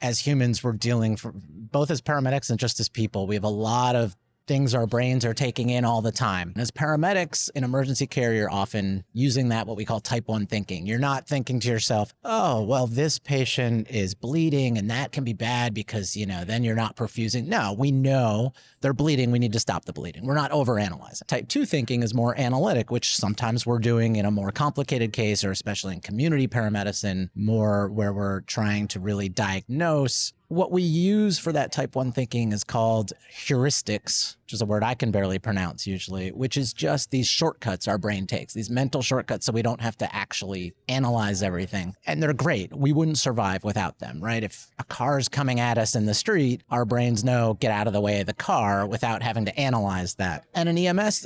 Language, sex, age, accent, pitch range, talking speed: Danish, male, 30-49, American, 105-135 Hz, 215 wpm